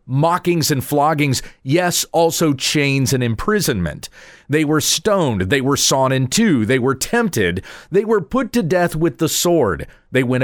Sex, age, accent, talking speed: male, 40-59, American, 165 wpm